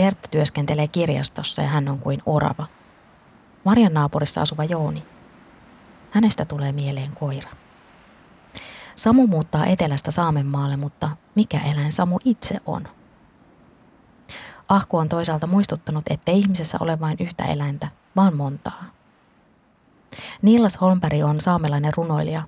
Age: 20-39